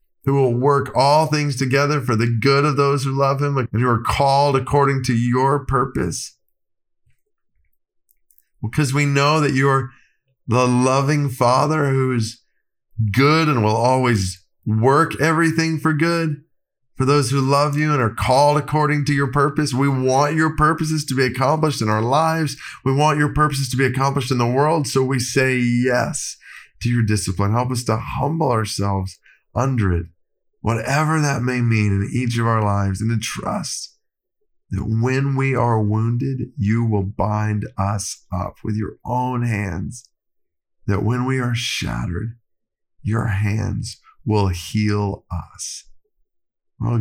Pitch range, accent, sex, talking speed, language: 105-140 Hz, American, male, 155 wpm, English